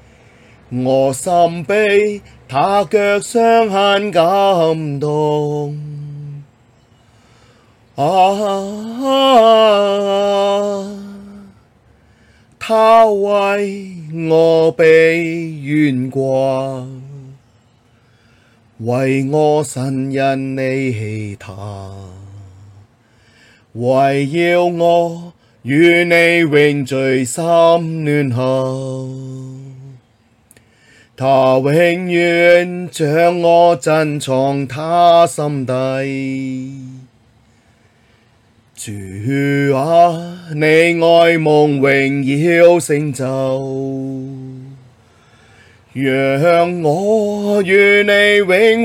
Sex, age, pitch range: male, 30-49, 125-180 Hz